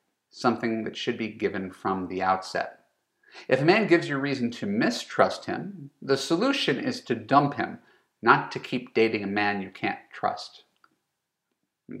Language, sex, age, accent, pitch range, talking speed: English, male, 40-59, American, 110-150 Hz, 165 wpm